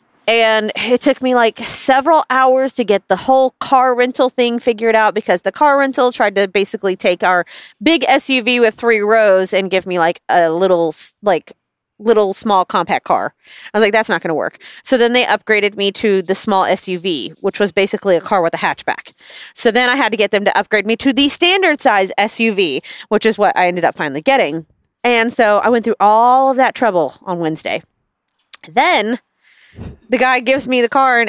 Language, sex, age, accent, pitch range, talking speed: English, female, 30-49, American, 195-250 Hz, 205 wpm